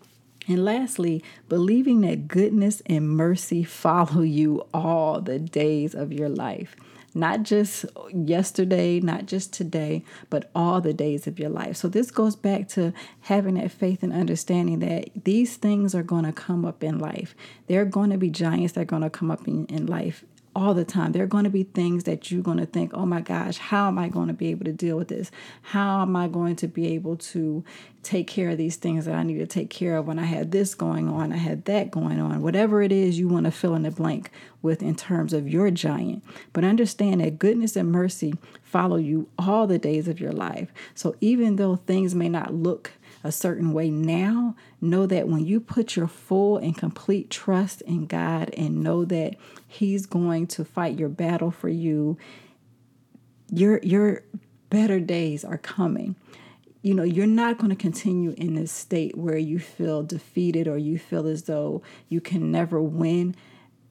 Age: 30-49